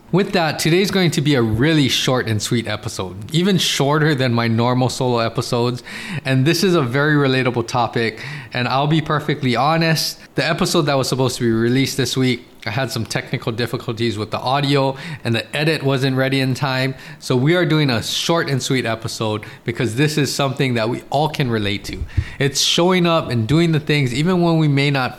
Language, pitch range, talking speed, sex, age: English, 120-155 Hz, 205 wpm, male, 20-39